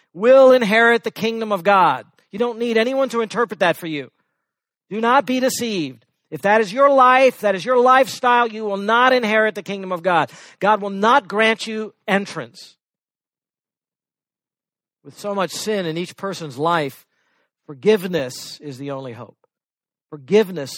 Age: 50-69